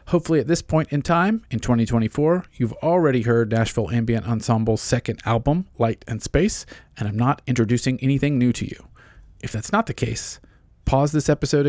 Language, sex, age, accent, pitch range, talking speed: English, male, 40-59, American, 110-140 Hz, 180 wpm